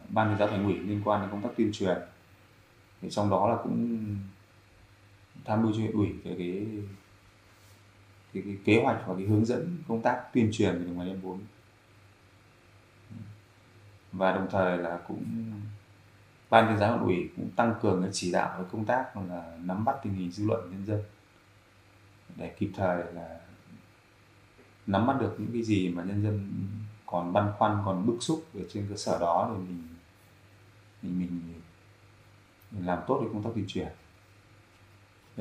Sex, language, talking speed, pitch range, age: male, Vietnamese, 165 wpm, 95-110 Hz, 20-39